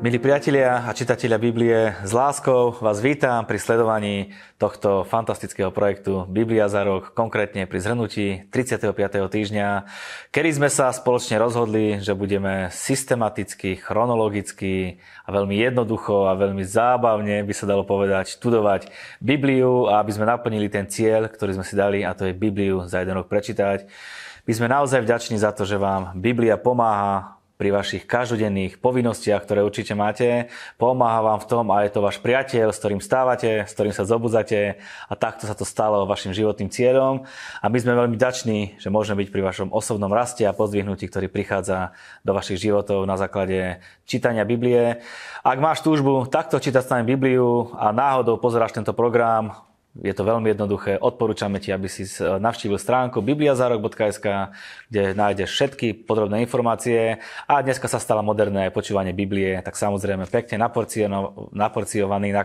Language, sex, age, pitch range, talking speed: Slovak, male, 20-39, 100-120 Hz, 160 wpm